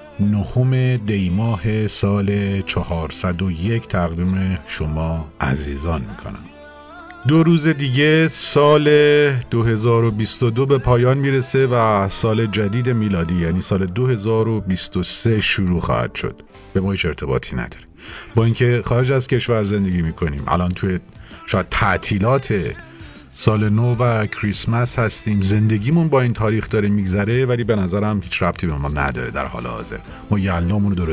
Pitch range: 95-130 Hz